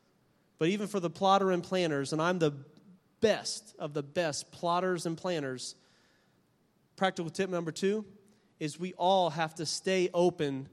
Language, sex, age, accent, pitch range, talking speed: English, male, 30-49, American, 150-180 Hz, 155 wpm